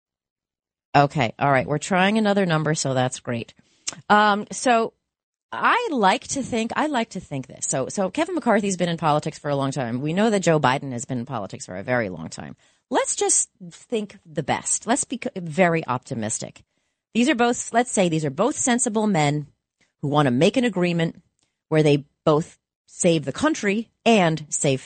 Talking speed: 195 wpm